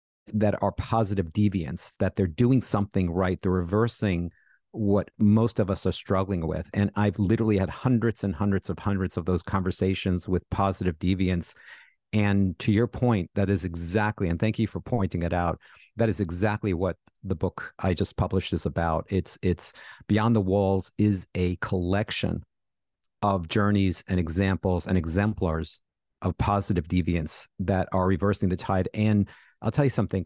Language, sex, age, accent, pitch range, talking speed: English, male, 50-69, American, 90-105 Hz, 170 wpm